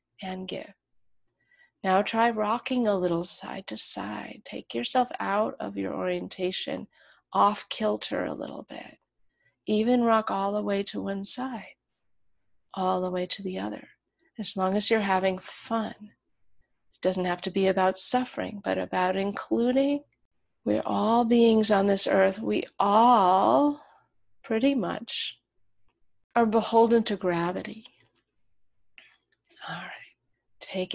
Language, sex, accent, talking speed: English, female, American, 130 wpm